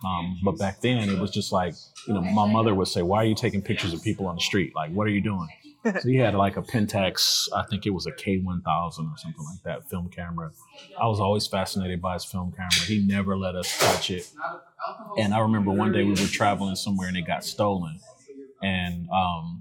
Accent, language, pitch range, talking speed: American, English, 95-135 Hz, 235 wpm